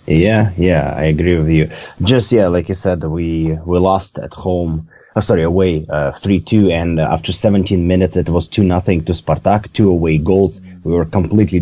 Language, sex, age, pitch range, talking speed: English, male, 30-49, 80-95 Hz, 185 wpm